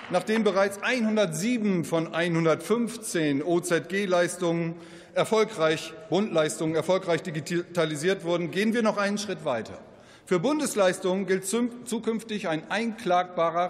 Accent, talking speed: German, 100 wpm